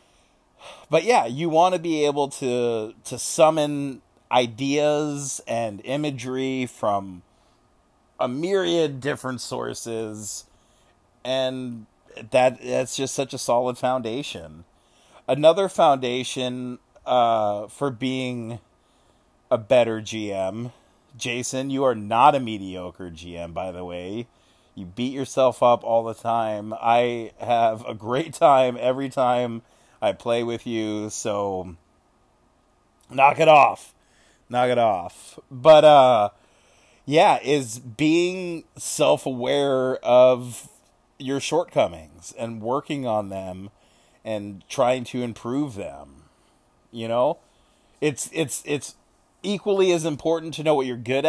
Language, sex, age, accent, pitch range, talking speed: English, male, 30-49, American, 110-140 Hz, 115 wpm